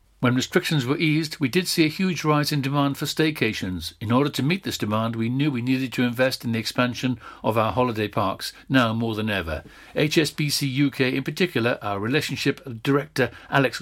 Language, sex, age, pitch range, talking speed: English, male, 60-79, 115-145 Hz, 195 wpm